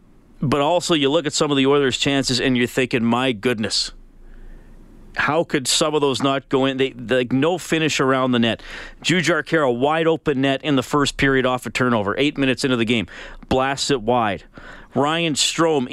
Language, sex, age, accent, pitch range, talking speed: English, male, 40-59, American, 125-150 Hz, 200 wpm